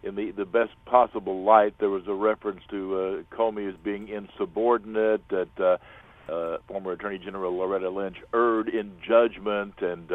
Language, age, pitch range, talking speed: English, 60-79, 95-115 Hz, 170 wpm